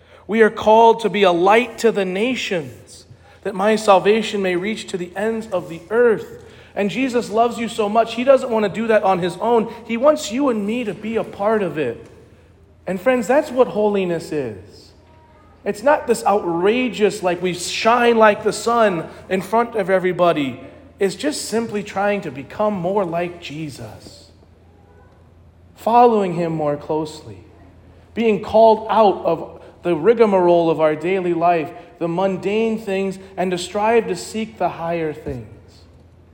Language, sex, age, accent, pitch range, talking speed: English, male, 40-59, American, 145-215 Hz, 170 wpm